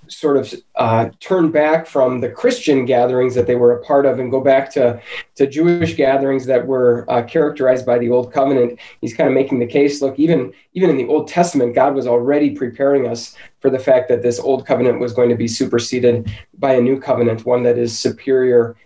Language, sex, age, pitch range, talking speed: English, male, 20-39, 120-140 Hz, 215 wpm